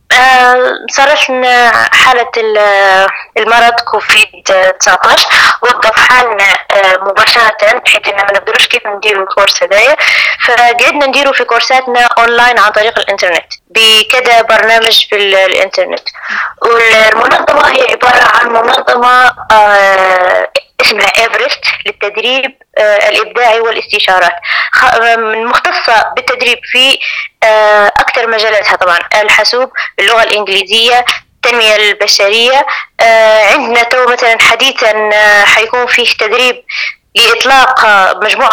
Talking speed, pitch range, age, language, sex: 95 wpm, 210-265 Hz, 20-39, Arabic, female